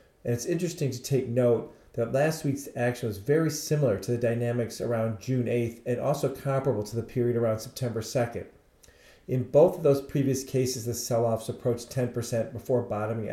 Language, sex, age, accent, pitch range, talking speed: English, male, 40-59, American, 110-130 Hz, 180 wpm